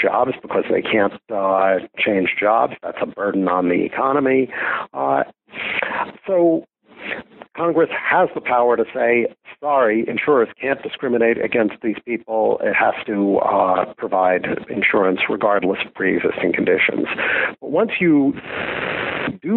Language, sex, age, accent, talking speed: English, male, 60-79, American, 130 wpm